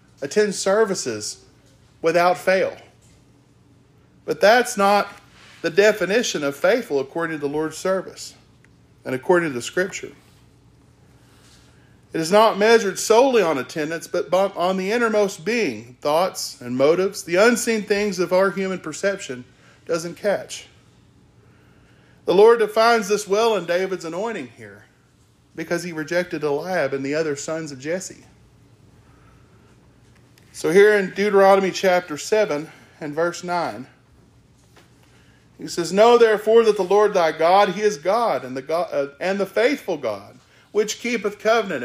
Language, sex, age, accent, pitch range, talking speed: English, male, 40-59, American, 155-210 Hz, 135 wpm